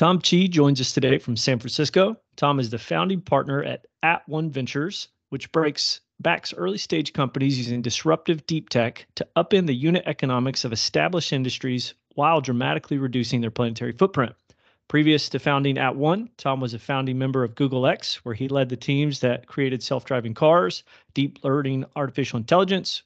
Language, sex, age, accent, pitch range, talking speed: English, male, 40-59, American, 125-150 Hz, 170 wpm